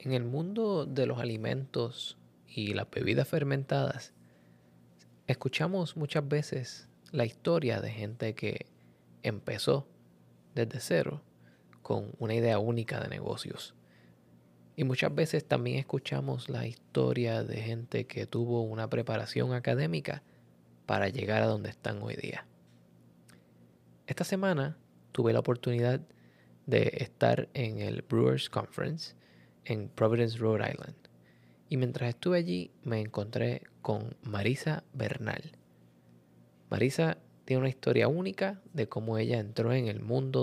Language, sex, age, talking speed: Spanish, male, 20-39, 125 wpm